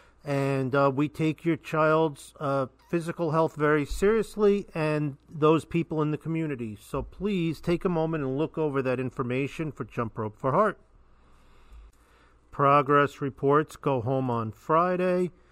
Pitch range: 130-170 Hz